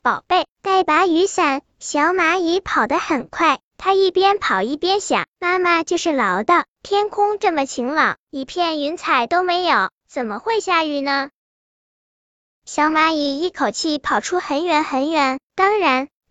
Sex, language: male, Chinese